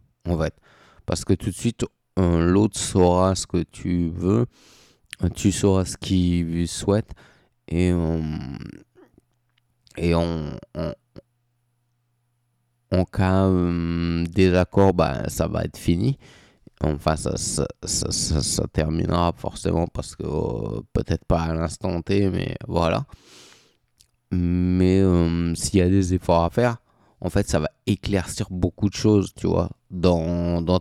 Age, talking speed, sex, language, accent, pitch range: 20-39, 125 wpm, male, French, French, 85-105 Hz